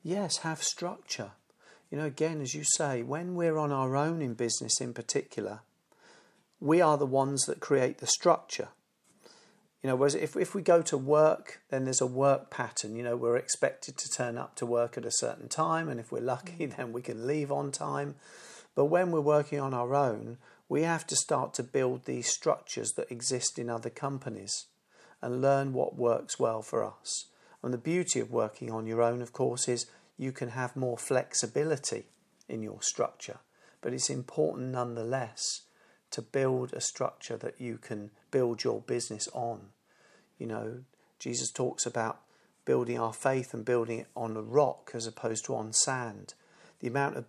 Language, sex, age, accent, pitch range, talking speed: English, male, 50-69, British, 115-145 Hz, 185 wpm